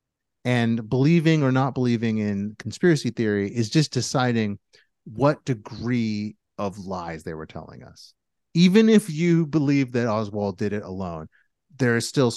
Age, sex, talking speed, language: 30-49, male, 150 wpm, English